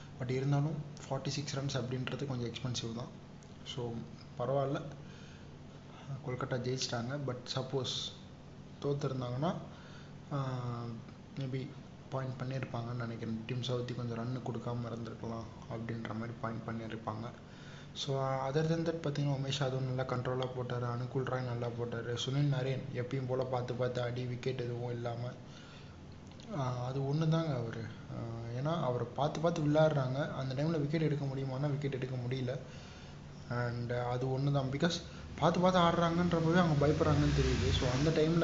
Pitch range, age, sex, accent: 120-145 Hz, 20-39, male, native